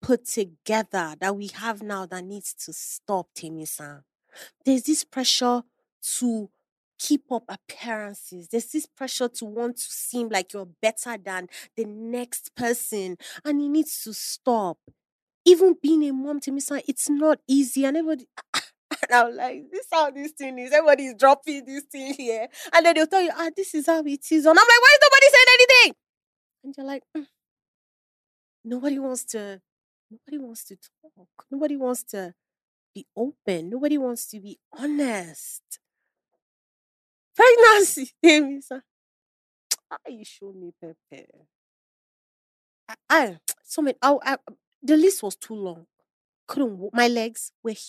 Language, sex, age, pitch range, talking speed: English, female, 30-49, 200-290 Hz, 155 wpm